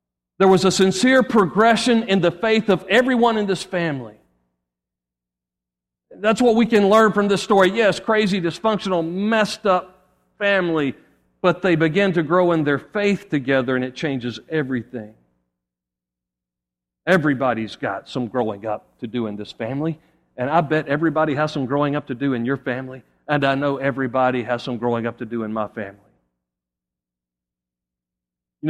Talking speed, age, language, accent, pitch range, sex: 160 wpm, 50-69, English, American, 115-165 Hz, male